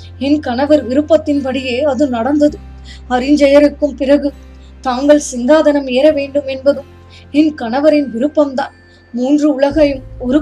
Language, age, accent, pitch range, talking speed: Tamil, 20-39, native, 255-290 Hz, 90 wpm